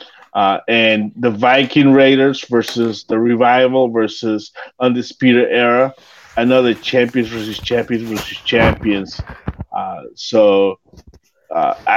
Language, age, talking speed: English, 30-49, 100 wpm